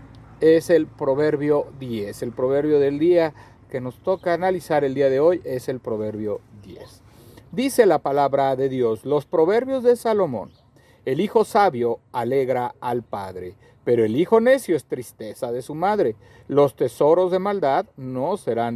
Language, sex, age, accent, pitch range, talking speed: Spanish, male, 50-69, Mexican, 120-165 Hz, 160 wpm